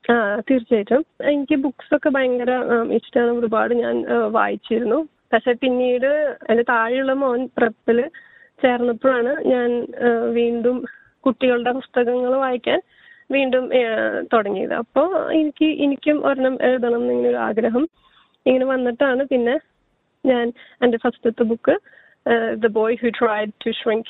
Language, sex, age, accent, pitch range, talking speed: Malayalam, female, 20-39, native, 230-270 Hz, 100 wpm